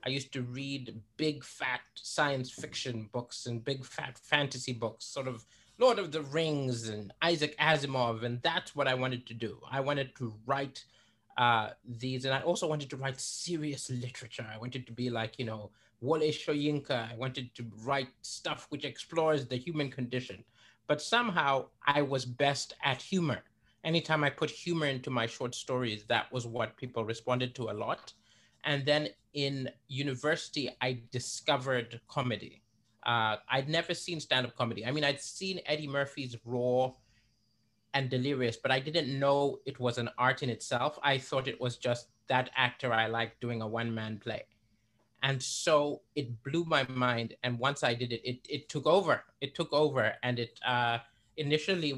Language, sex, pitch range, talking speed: English, male, 115-140 Hz, 175 wpm